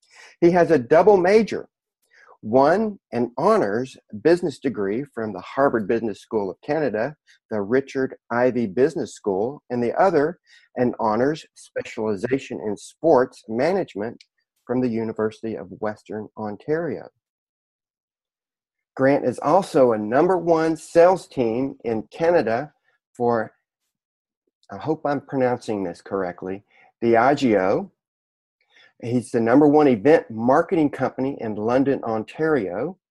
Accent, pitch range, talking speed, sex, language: American, 110-155 Hz, 120 wpm, male, English